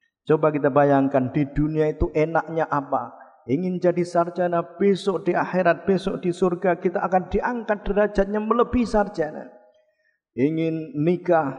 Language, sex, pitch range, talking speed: Indonesian, male, 135-170 Hz, 130 wpm